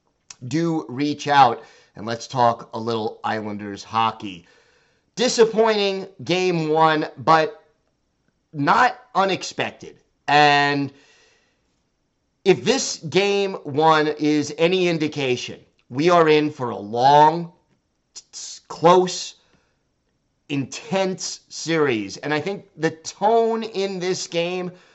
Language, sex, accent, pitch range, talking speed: English, male, American, 145-170 Hz, 100 wpm